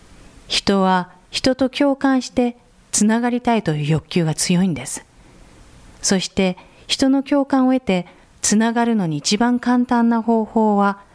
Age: 40-59